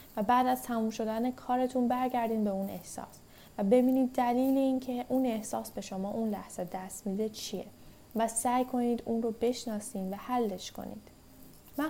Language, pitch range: Persian, 205-250 Hz